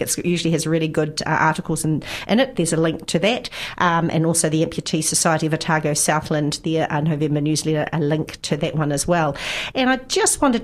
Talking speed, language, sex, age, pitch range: 215 wpm, English, female, 50-69, 155-180 Hz